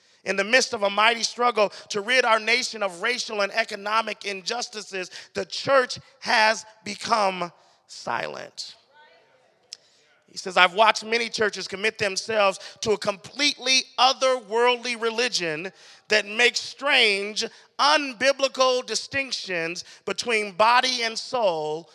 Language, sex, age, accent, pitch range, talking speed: English, male, 30-49, American, 200-255 Hz, 120 wpm